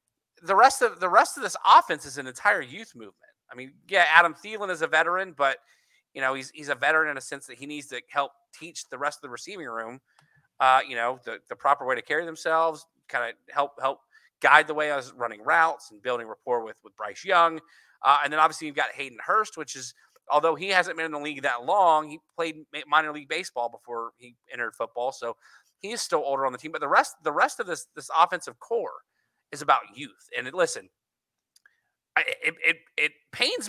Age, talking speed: 30-49, 220 wpm